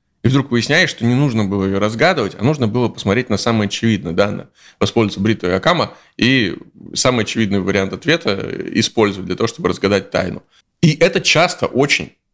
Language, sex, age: Russian, male, 20-39